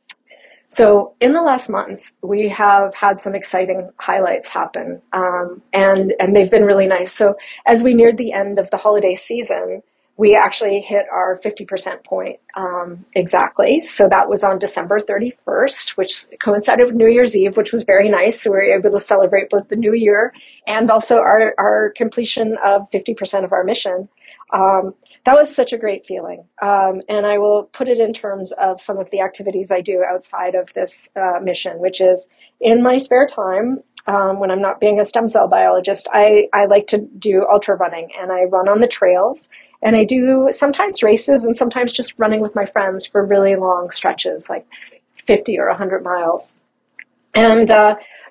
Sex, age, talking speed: female, 40-59, 190 wpm